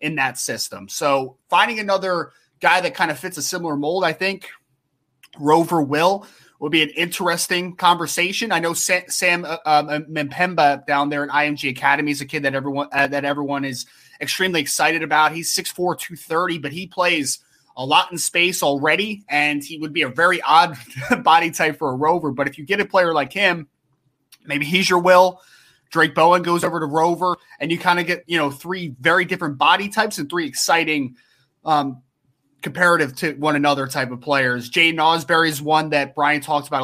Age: 20-39